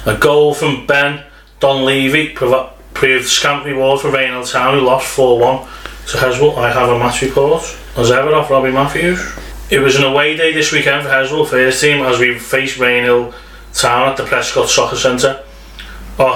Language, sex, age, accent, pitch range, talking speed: English, male, 20-39, British, 120-140 Hz, 185 wpm